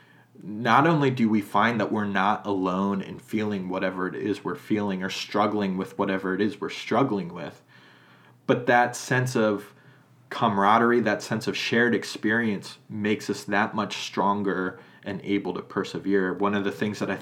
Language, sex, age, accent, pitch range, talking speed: English, male, 30-49, American, 100-120 Hz, 175 wpm